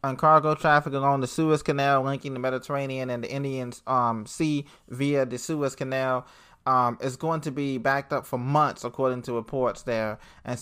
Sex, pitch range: male, 125-150 Hz